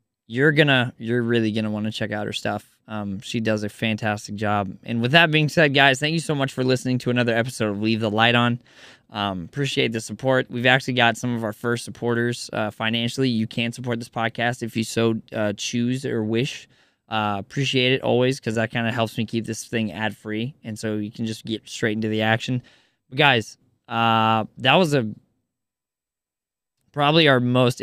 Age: 20-39